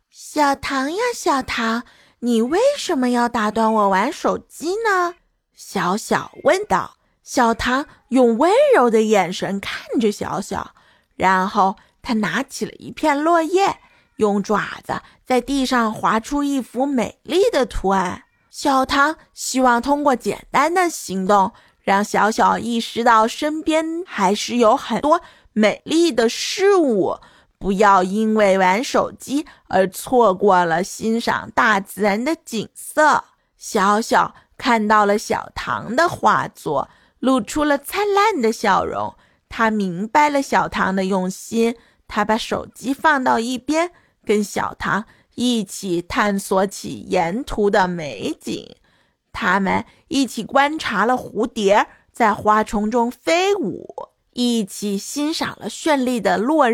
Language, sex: Chinese, female